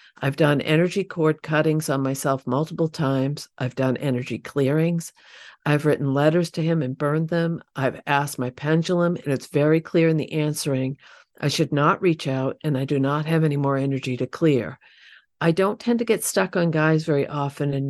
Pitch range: 135-160 Hz